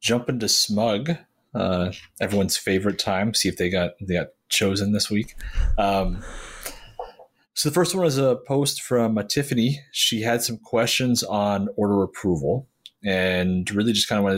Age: 30-49